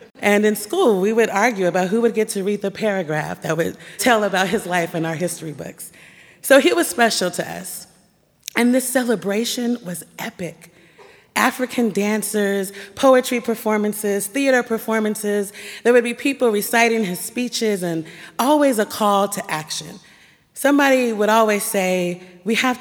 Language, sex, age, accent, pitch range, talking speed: English, female, 30-49, American, 170-220 Hz, 160 wpm